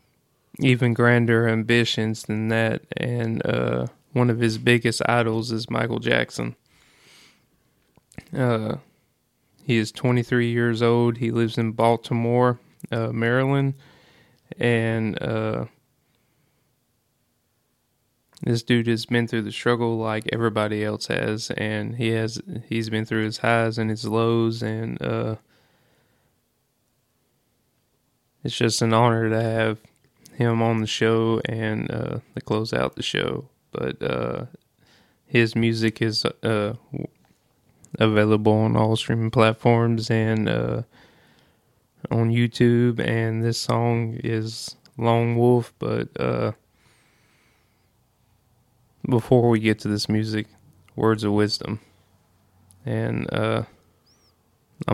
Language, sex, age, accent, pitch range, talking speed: English, male, 20-39, American, 110-120 Hz, 115 wpm